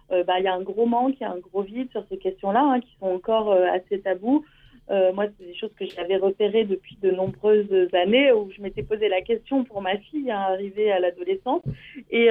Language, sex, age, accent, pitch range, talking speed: French, female, 30-49, French, 190-240 Hz, 240 wpm